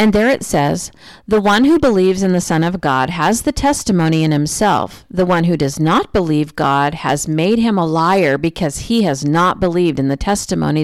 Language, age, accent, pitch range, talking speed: English, 40-59, American, 160-215 Hz, 210 wpm